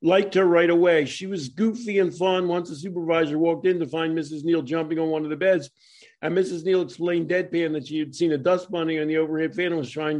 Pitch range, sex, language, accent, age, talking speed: 155-190 Hz, male, English, American, 50-69, 255 wpm